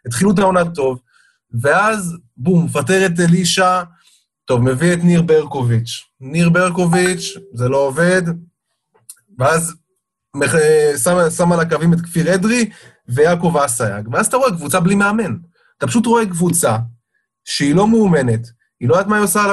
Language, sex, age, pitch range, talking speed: Hebrew, male, 30-49, 145-210 Hz, 150 wpm